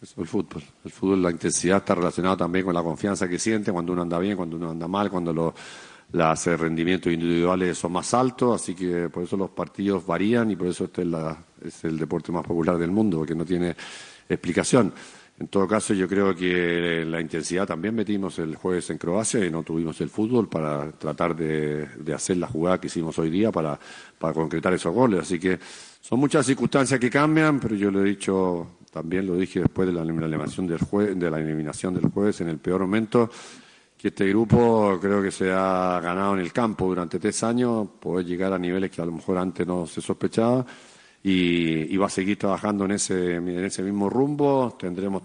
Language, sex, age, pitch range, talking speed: Spanish, male, 50-69, 85-100 Hz, 205 wpm